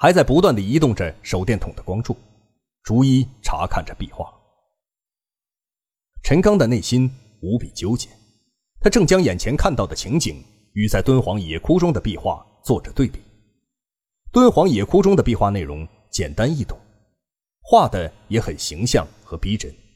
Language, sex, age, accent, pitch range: Chinese, male, 30-49, native, 90-125 Hz